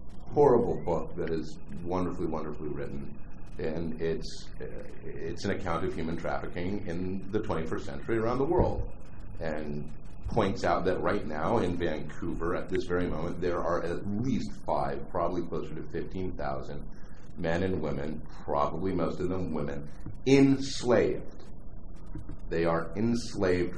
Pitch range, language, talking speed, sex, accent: 80-95 Hz, English, 140 wpm, male, American